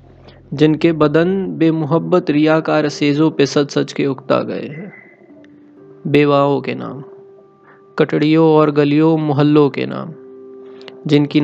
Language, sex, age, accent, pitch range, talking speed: Hindi, male, 20-39, native, 140-160 Hz, 115 wpm